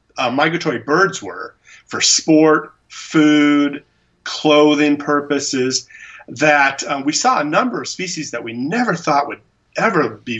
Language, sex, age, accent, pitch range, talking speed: English, male, 40-59, American, 115-155 Hz, 145 wpm